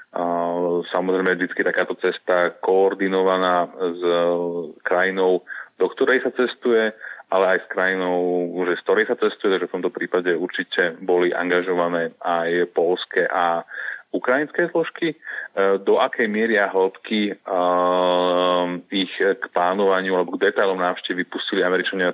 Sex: male